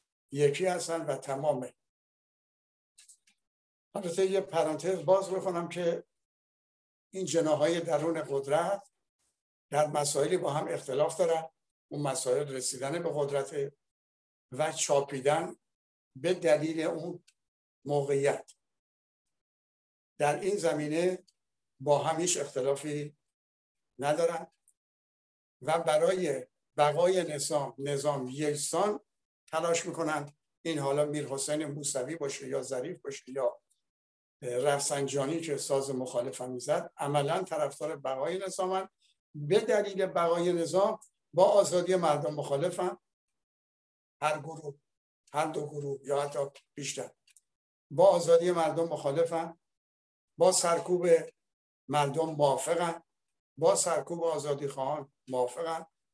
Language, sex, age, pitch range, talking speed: Persian, male, 60-79, 140-170 Hz, 95 wpm